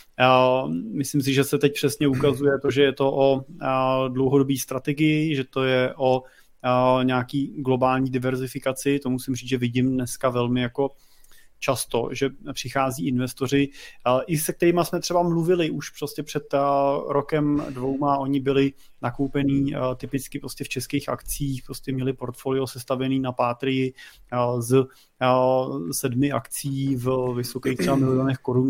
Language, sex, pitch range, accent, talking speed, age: Czech, male, 130-145 Hz, native, 140 wpm, 30-49